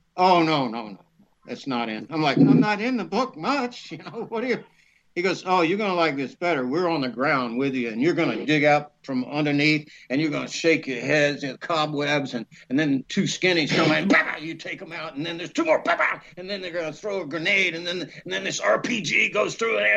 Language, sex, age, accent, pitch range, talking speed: English, male, 60-79, American, 130-175 Hz, 260 wpm